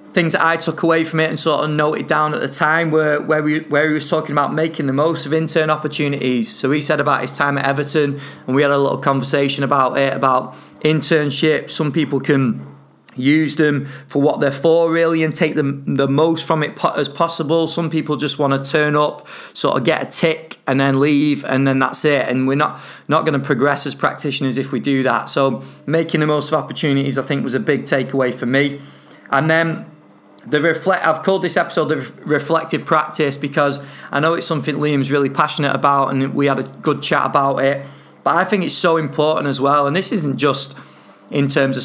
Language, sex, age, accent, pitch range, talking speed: English, male, 30-49, British, 140-160 Hz, 215 wpm